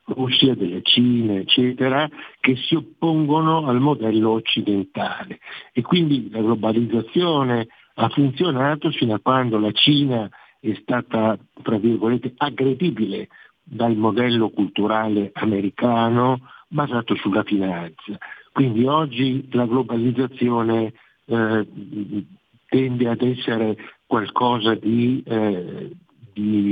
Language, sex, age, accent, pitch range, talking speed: Italian, male, 60-79, native, 110-135 Hz, 100 wpm